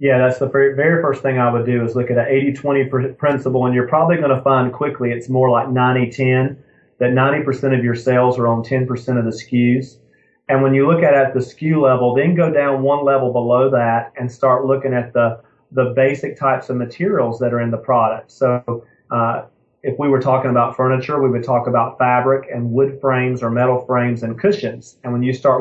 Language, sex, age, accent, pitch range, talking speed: English, male, 30-49, American, 125-140 Hz, 220 wpm